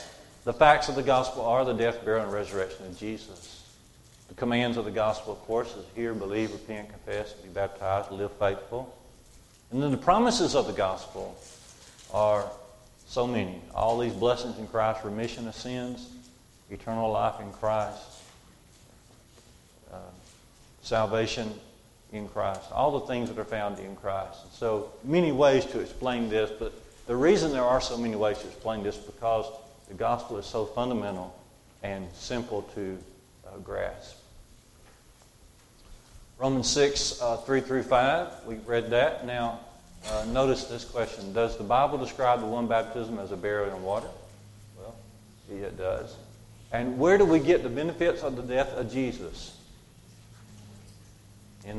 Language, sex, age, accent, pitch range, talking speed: English, male, 50-69, American, 105-125 Hz, 155 wpm